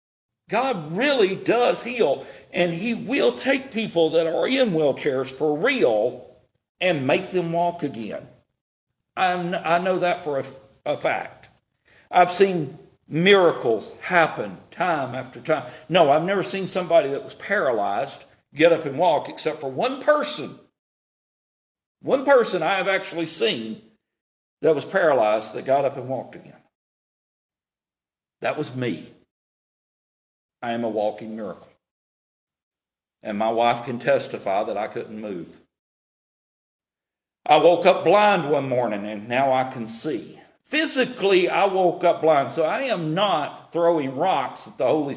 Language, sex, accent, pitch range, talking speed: English, male, American, 130-190 Hz, 145 wpm